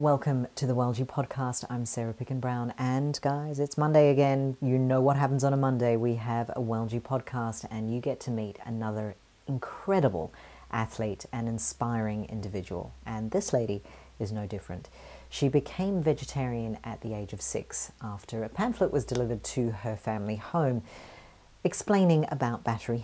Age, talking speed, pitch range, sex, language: 40-59, 160 wpm, 115-140 Hz, female, English